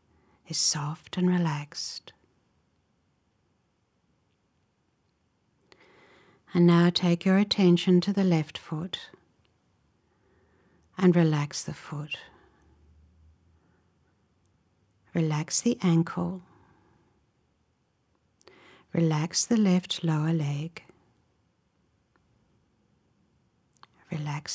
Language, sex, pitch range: English, female, 115-170 Hz